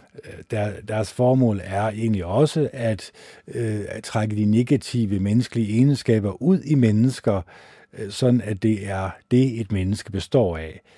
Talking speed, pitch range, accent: 130 wpm, 95-125 Hz, Danish